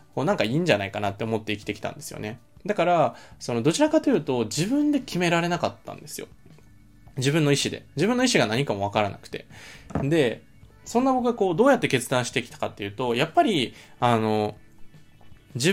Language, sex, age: Japanese, male, 20-39